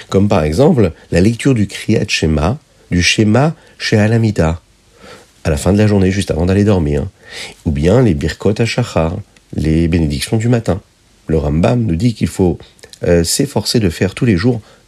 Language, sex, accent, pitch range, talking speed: French, male, French, 80-110 Hz, 175 wpm